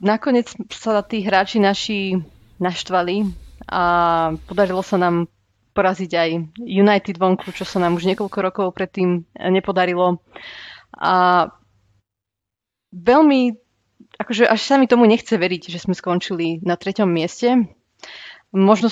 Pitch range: 175-205 Hz